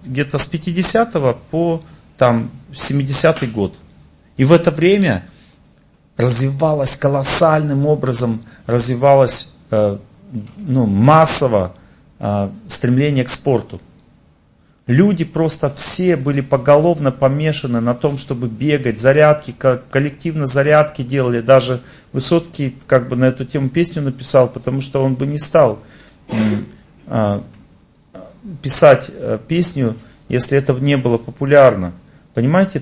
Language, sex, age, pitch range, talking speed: Russian, male, 40-59, 125-155 Hz, 110 wpm